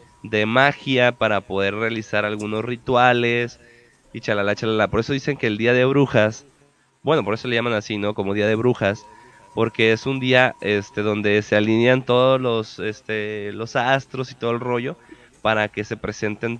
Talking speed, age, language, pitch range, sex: 180 wpm, 20-39, Spanish, 105-130 Hz, male